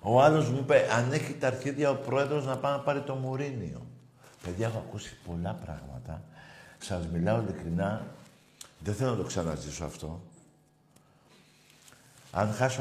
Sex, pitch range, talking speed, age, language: male, 95-130 Hz, 150 wpm, 60-79, Greek